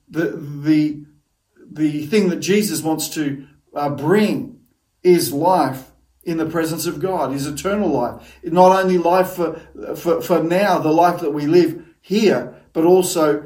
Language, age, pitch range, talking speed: English, 50-69, 150-185 Hz, 155 wpm